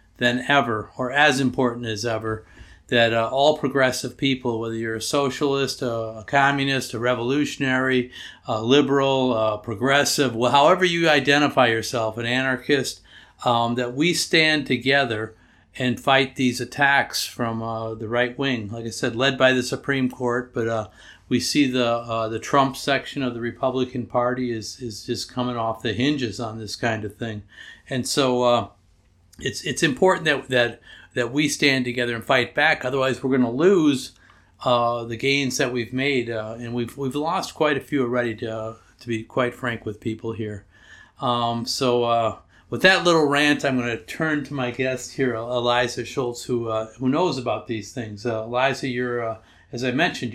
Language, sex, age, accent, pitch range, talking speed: English, male, 50-69, American, 115-135 Hz, 180 wpm